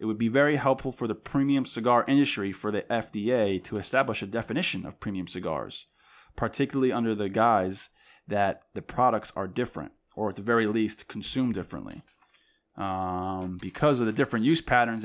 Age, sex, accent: 20-39, male, American